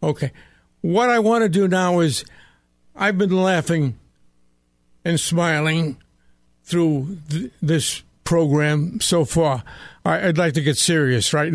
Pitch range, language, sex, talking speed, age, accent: 120-185 Hz, English, male, 125 wpm, 60-79, American